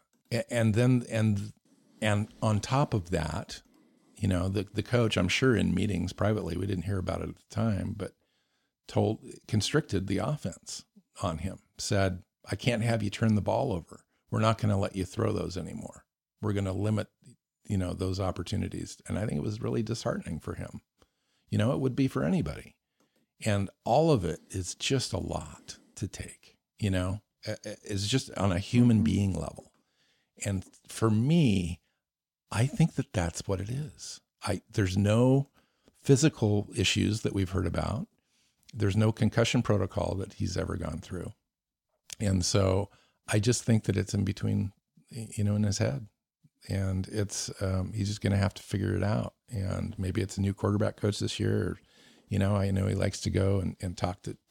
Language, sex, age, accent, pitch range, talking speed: English, male, 50-69, American, 95-110 Hz, 185 wpm